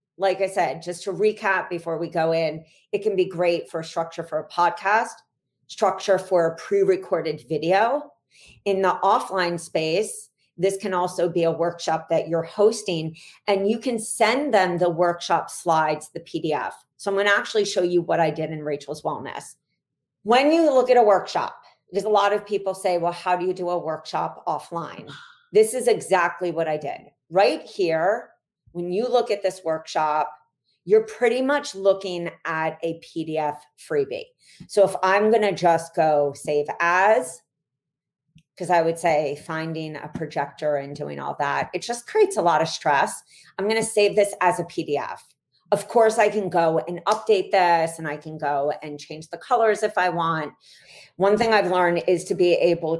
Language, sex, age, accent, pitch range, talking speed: English, female, 40-59, American, 160-200 Hz, 185 wpm